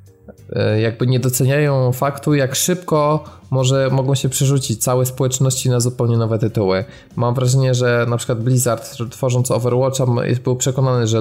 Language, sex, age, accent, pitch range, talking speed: Polish, male, 20-39, native, 110-130 Hz, 145 wpm